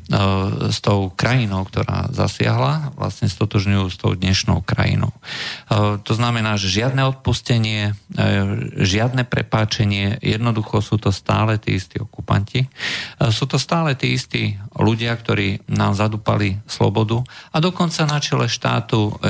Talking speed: 125 wpm